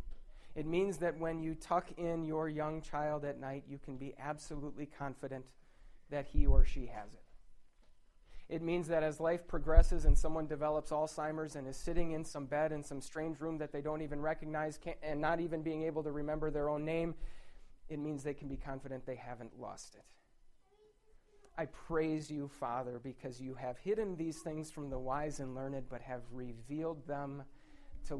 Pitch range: 145-195 Hz